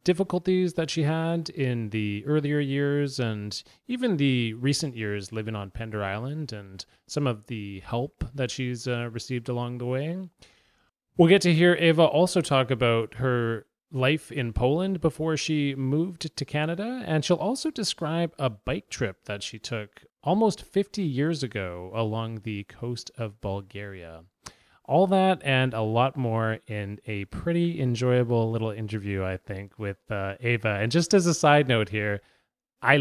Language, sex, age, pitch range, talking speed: English, male, 30-49, 105-150 Hz, 165 wpm